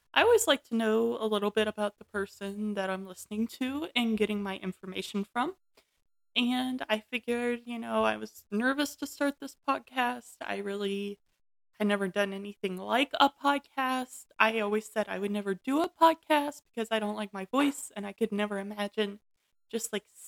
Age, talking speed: 20-39, 185 wpm